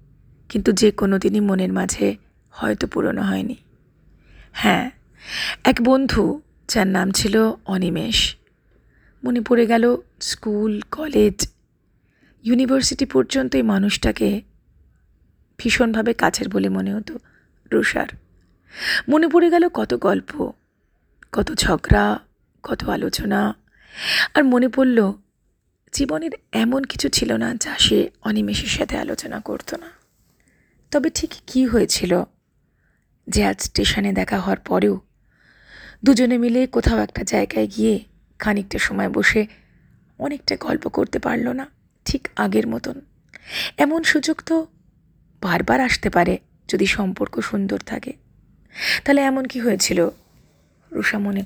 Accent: native